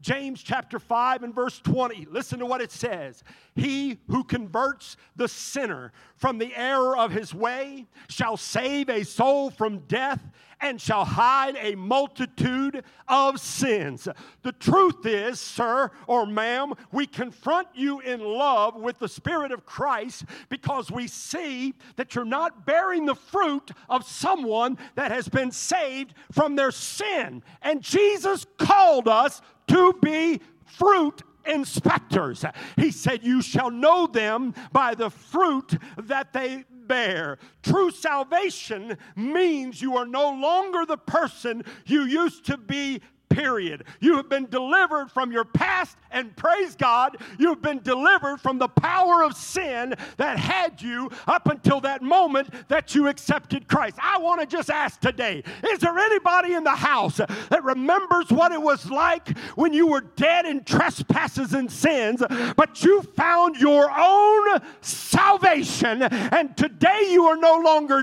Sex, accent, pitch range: male, American, 245-330 Hz